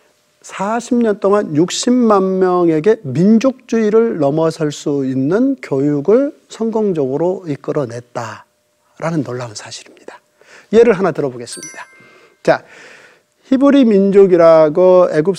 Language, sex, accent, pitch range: Korean, male, native, 150-220 Hz